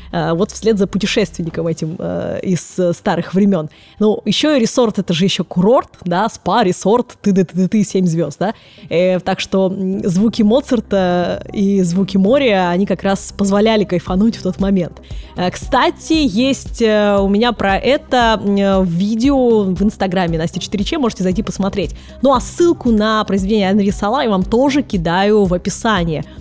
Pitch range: 190-245 Hz